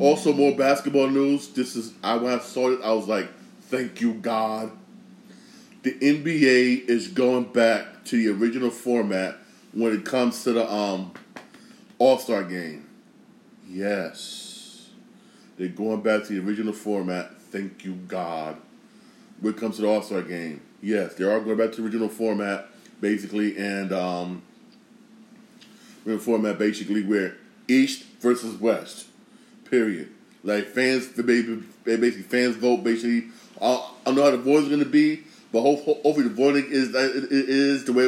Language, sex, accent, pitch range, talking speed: English, male, American, 110-140 Hz, 155 wpm